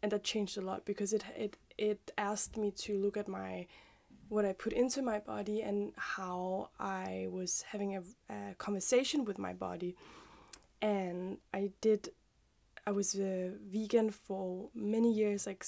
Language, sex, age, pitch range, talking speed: English, female, 10-29, 195-215 Hz, 165 wpm